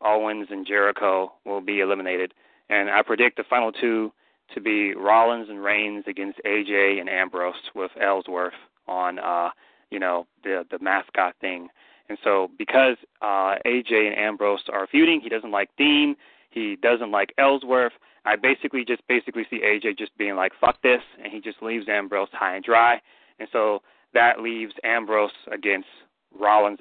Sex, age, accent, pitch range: male, 30-49, American, 100-125 Hz